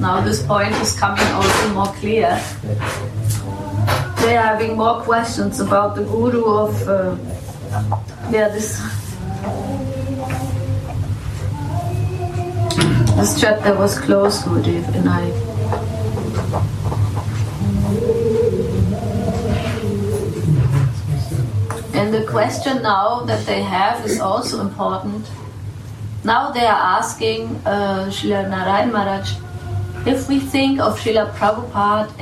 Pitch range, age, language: 100-140 Hz, 30-49, English